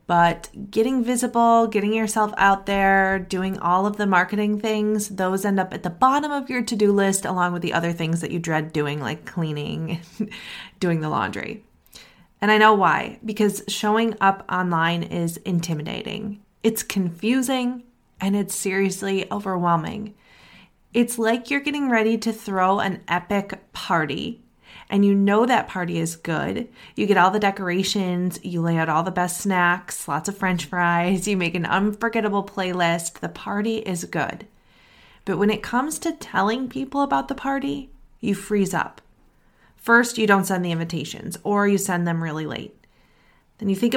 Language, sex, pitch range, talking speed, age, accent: English, female, 180-225 Hz, 170 wpm, 20-39, American